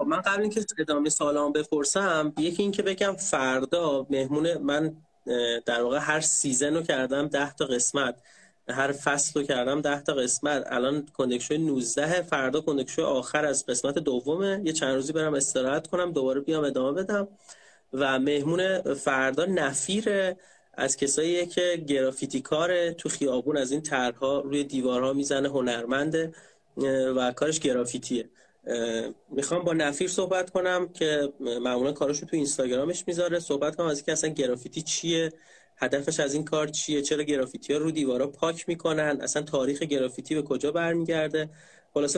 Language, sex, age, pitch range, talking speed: Persian, male, 30-49, 135-170 Hz, 150 wpm